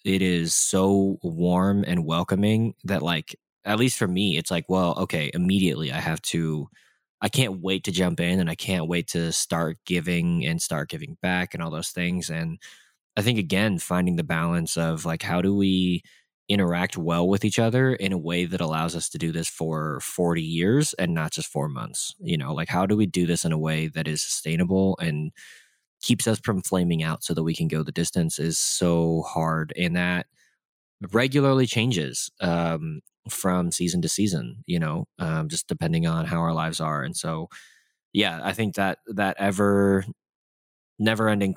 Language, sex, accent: English, male, American